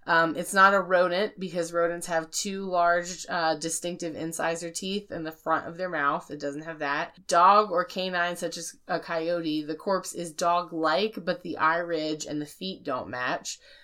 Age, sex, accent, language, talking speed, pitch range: 20-39, female, American, English, 190 wpm, 160-195 Hz